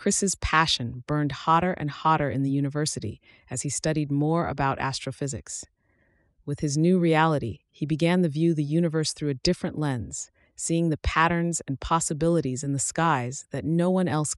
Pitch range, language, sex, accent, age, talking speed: 135-165 Hz, English, female, American, 30-49, 170 wpm